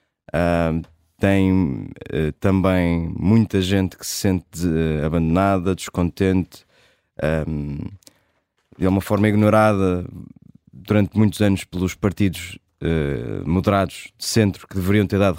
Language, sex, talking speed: Portuguese, male, 115 wpm